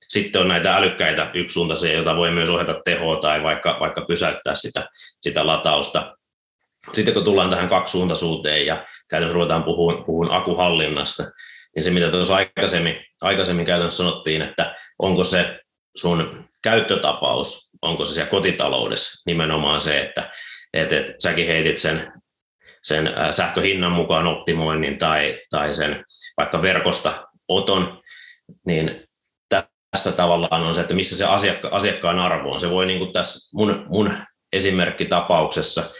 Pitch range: 85-95 Hz